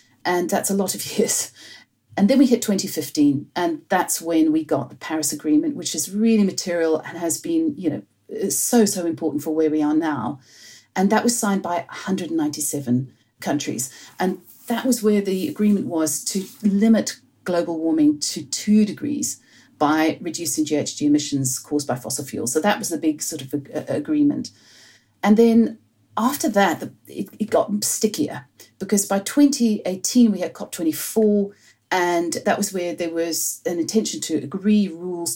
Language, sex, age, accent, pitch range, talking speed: English, female, 40-59, British, 155-215 Hz, 170 wpm